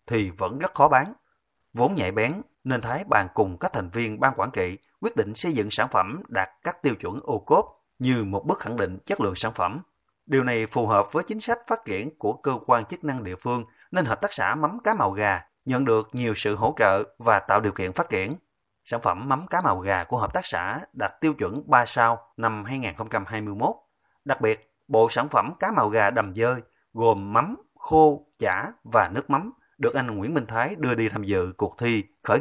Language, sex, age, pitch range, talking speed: Vietnamese, male, 30-49, 105-130 Hz, 225 wpm